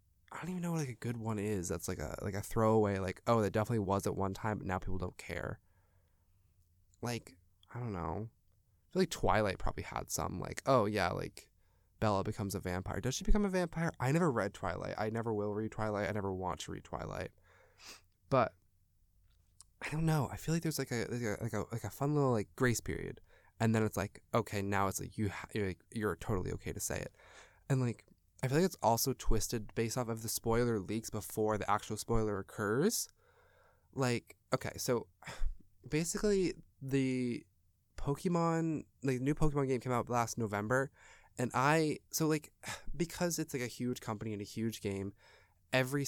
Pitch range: 100-125 Hz